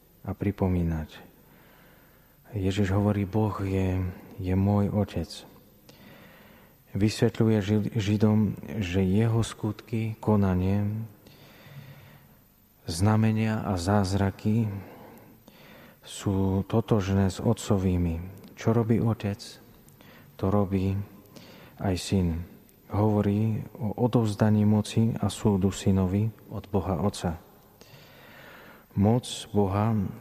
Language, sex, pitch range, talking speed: Slovak, male, 95-110 Hz, 80 wpm